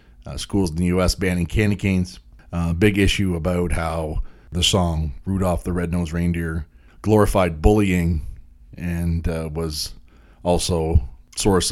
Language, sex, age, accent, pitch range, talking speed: English, male, 30-49, American, 80-95 Hz, 135 wpm